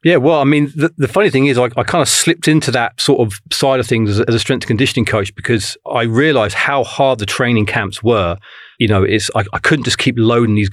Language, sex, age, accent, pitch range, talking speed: English, male, 40-59, British, 105-125 Hz, 255 wpm